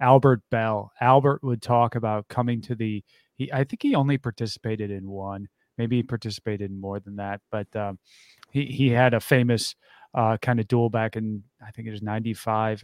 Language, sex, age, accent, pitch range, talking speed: English, male, 30-49, American, 110-140 Hz, 185 wpm